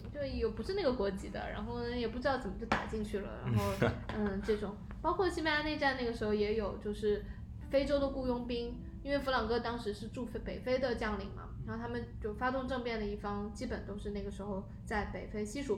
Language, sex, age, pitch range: Chinese, female, 10-29, 205-255 Hz